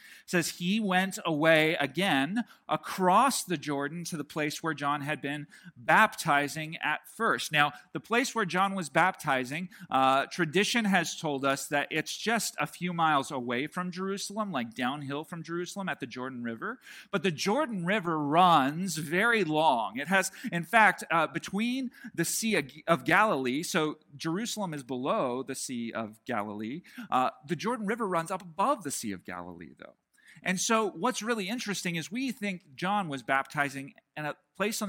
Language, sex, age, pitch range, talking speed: English, male, 40-59, 145-200 Hz, 170 wpm